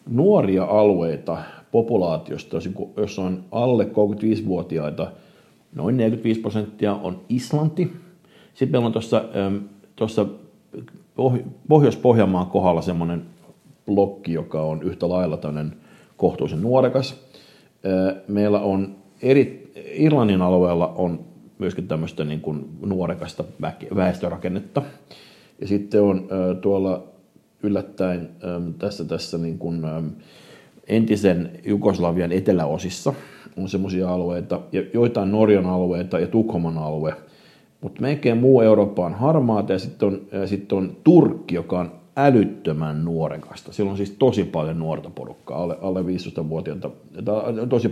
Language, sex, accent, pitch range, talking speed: Finnish, male, native, 90-110 Hz, 110 wpm